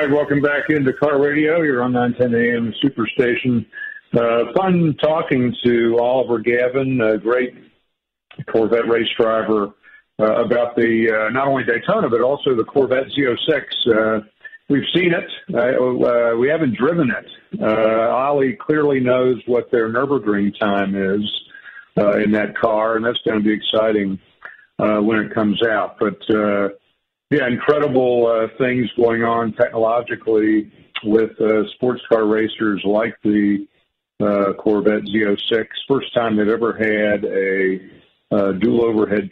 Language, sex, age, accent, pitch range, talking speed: English, male, 50-69, American, 105-125 Hz, 145 wpm